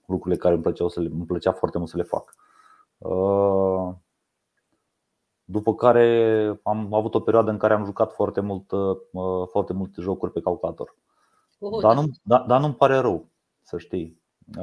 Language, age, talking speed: Romanian, 30-49, 140 wpm